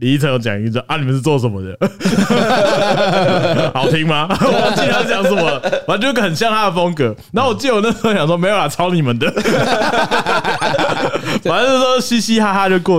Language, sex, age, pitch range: Chinese, male, 30-49, 120-165 Hz